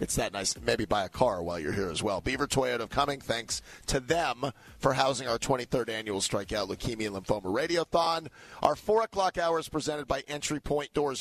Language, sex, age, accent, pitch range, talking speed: English, male, 40-59, American, 115-150 Hz, 205 wpm